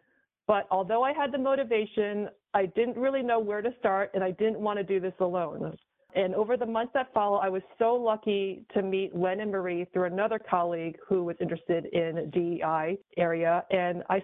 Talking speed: 200 wpm